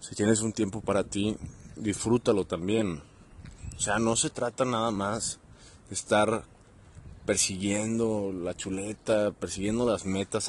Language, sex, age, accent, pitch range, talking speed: Spanish, male, 30-49, Mexican, 100-120 Hz, 130 wpm